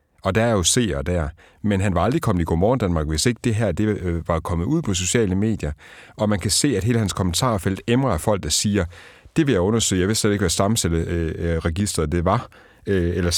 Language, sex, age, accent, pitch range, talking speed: Danish, male, 60-79, native, 90-120 Hz, 225 wpm